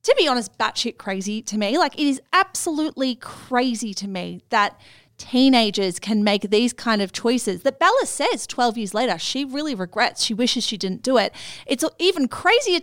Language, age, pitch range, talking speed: English, 30-49, 195-250 Hz, 185 wpm